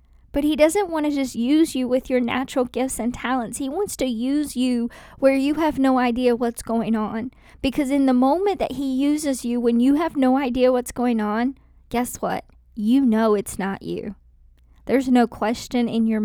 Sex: female